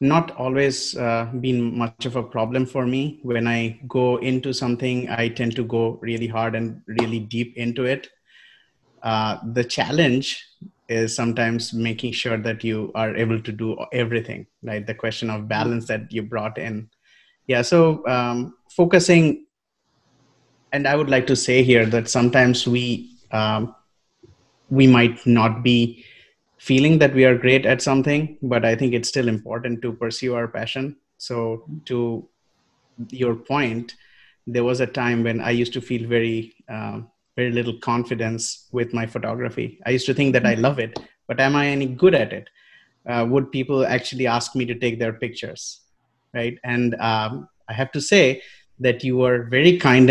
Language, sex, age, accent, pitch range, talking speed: English, male, 30-49, Indian, 115-130 Hz, 170 wpm